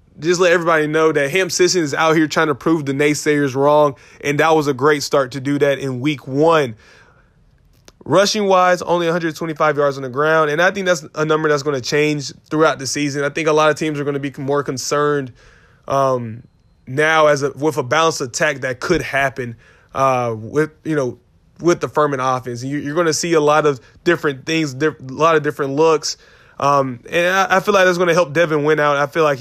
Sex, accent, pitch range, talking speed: male, American, 140-175 Hz, 225 wpm